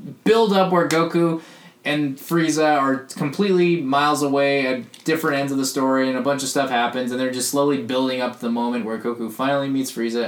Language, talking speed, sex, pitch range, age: English, 205 wpm, male, 130-160 Hz, 20-39